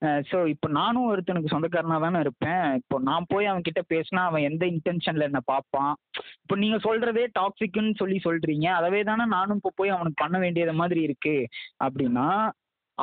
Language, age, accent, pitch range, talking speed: Tamil, 20-39, native, 155-210 Hz, 155 wpm